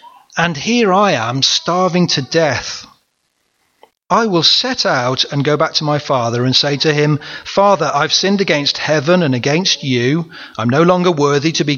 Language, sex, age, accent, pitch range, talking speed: English, male, 40-59, British, 145-195 Hz, 180 wpm